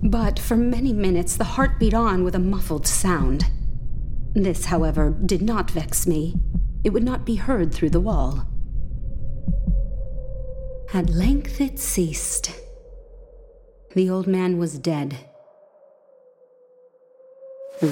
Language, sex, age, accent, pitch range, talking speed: English, female, 30-49, American, 160-260 Hz, 120 wpm